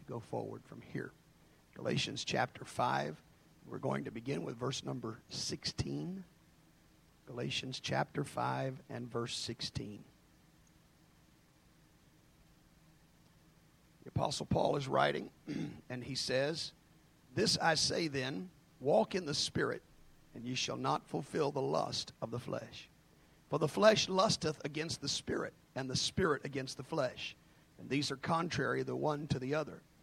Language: English